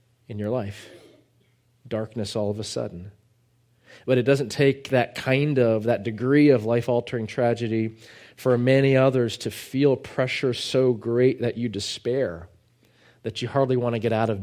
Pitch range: 105-125 Hz